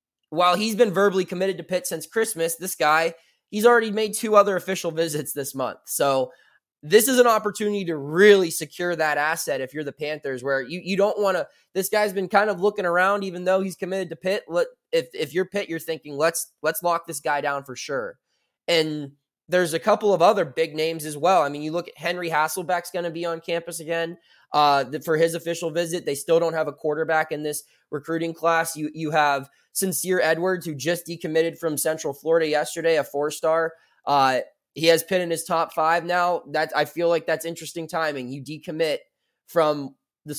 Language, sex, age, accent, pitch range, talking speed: English, male, 20-39, American, 155-190 Hz, 205 wpm